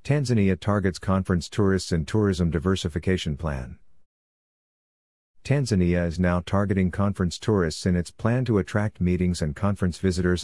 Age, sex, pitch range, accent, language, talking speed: 50-69, male, 85-100 Hz, American, English, 130 wpm